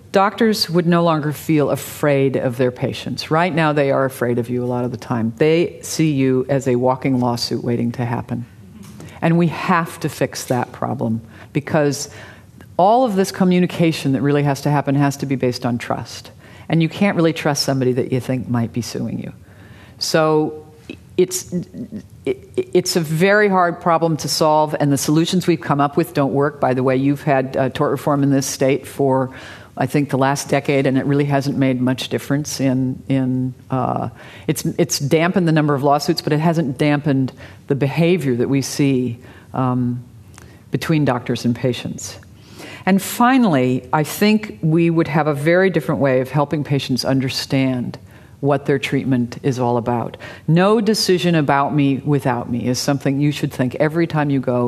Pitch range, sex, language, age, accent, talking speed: 125-155 Hz, female, English, 50-69, American, 185 wpm